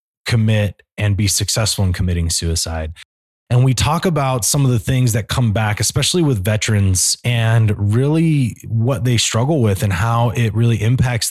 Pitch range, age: 100-125 Hz, 20-39